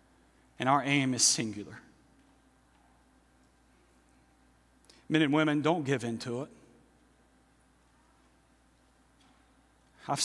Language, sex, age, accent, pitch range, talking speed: English, male, 40-59, American, 135-180 Hz, 80 wpm